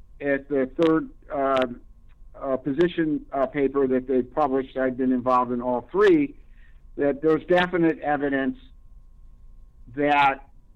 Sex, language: male, English